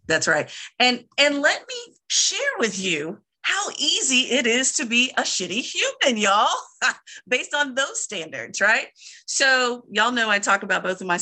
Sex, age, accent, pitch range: female, 40-59, American, 170-230 Hz